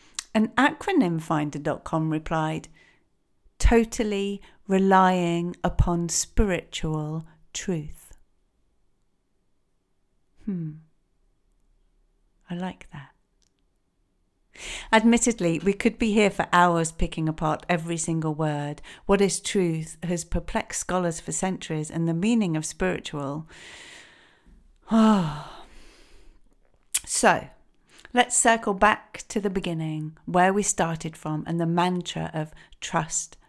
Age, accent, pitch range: 50-69, British, 155-205 Hz